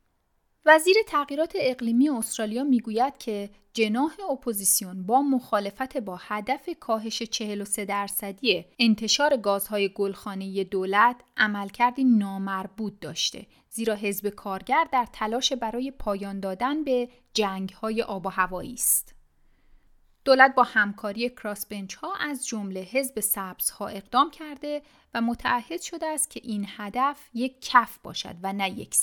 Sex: female